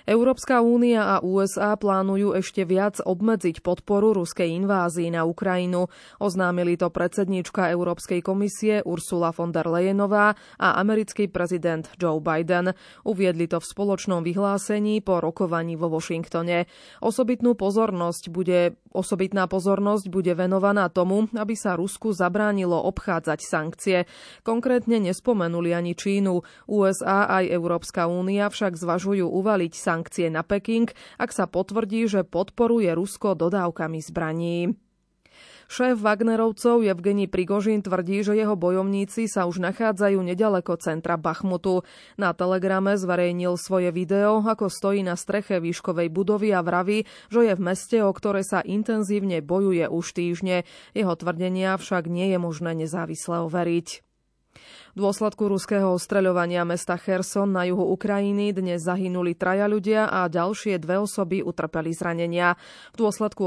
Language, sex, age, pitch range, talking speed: Slovak, female, 20-39, 175-205 Hz, 130 wpm